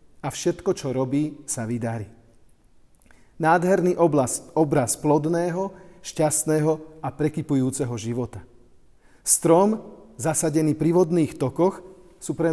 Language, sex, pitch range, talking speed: Slovak, male, 120-170 Hz, 100 wpm